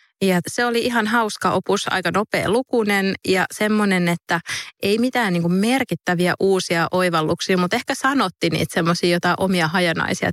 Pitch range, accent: 170-195 Hz, Finnish